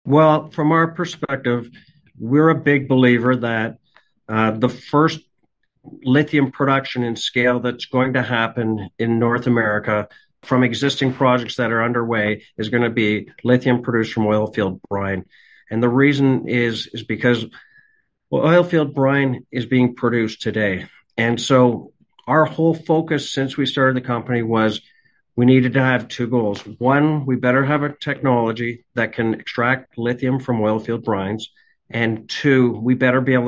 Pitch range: 115-135 Hz